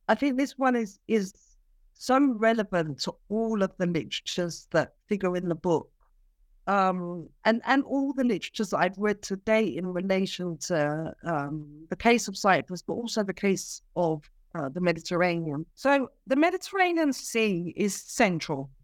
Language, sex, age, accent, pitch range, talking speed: English, female, 50-69, British, 175-235 Hz, 160 wpm